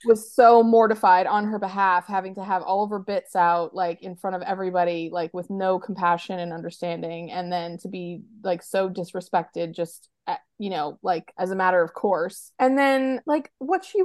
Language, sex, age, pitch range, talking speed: English, female, 20-39, 180-220 Hz, 195 wpm